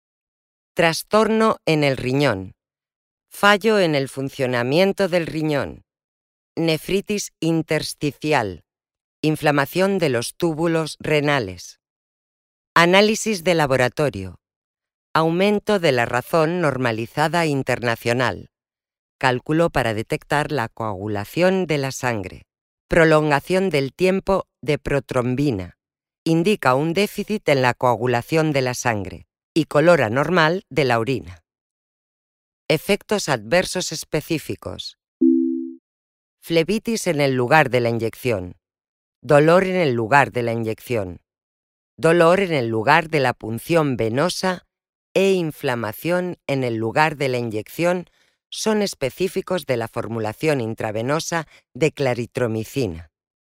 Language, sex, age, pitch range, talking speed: English, female, 40-59, 115-165 Hz, 105 wpm